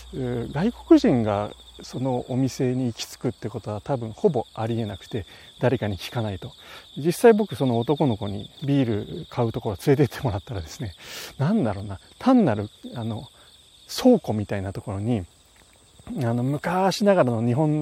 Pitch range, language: 110-165 Hz, Japanese